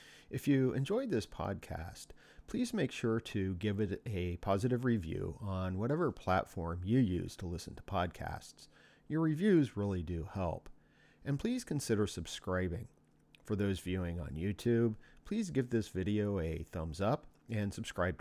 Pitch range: 90-110 Hz